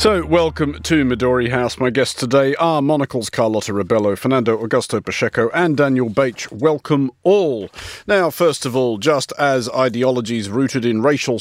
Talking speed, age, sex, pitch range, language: 160 wpm, 50-69, male, 115-160 Hz, English